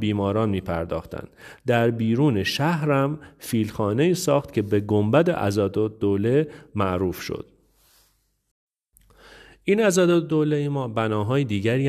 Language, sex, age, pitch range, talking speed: Persian, male, 40-59, 105-145 Hz, 100 wpm